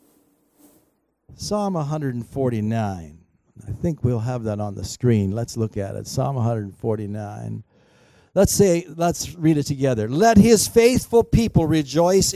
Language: English